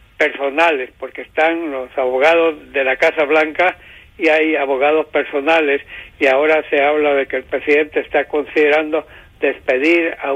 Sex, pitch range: male, 145-160 Hz